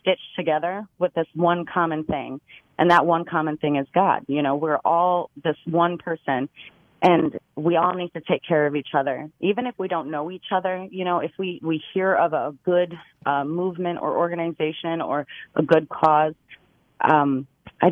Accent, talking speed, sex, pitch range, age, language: American, 190 wpm, female, 145-170 Hz, 30-49, English